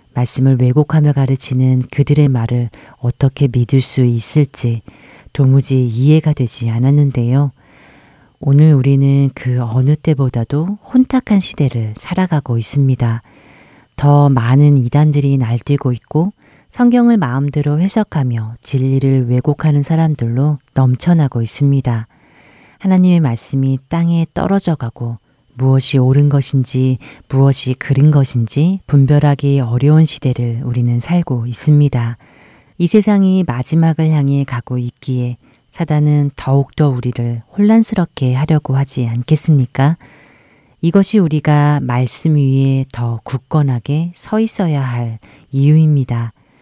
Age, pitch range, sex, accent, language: 40-59, 125-150 Hz, female, native, Korean